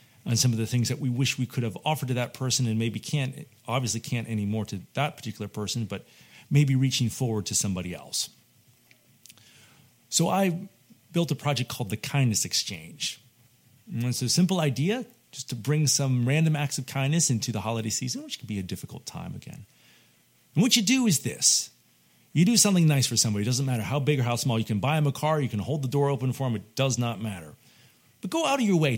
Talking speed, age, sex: 225 wpm, 40-59, male